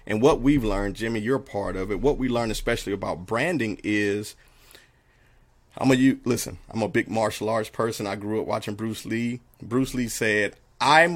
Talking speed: 200 wpm